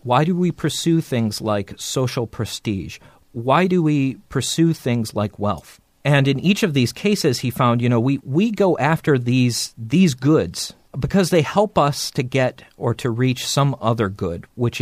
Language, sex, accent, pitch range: English, male, American, 105-145 Hz